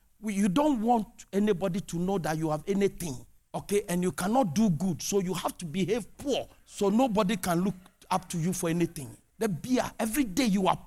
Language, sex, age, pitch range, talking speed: English, male, 50-69, 175-260 Hz, 210 wpm